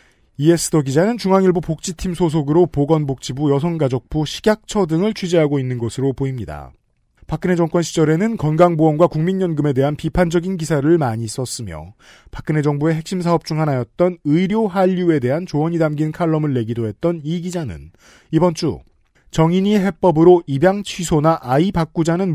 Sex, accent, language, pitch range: male, native, Korean, 135-175 Hz